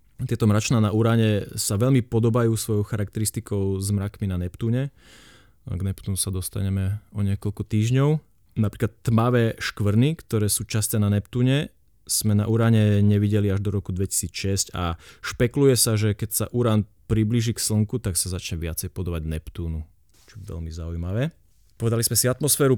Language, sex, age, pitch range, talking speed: Slovak, male, 30-49, 95-115 Hz, 160 wpm